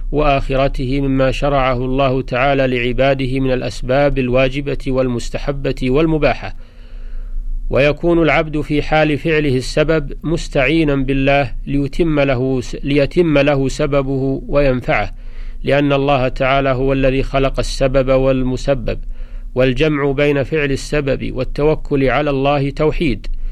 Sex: male